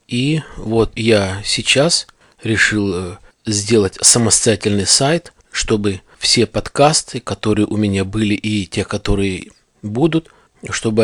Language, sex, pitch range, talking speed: Russian, male, 105-125 Hz, 110 wpm